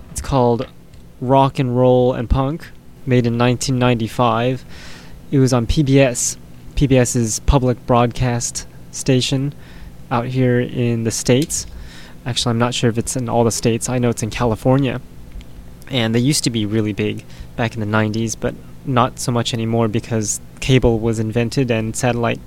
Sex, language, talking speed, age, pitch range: male, English, 160 wpm, 20-39, 110-130 Hz